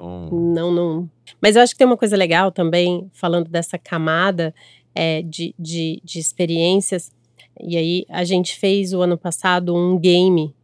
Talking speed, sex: 165 wpm, female